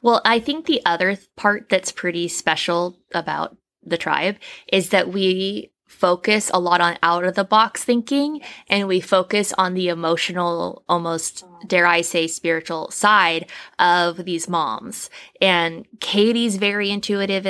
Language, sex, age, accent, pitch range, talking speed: English, female, 20-39, American, 170-200 Hz, 135 wpm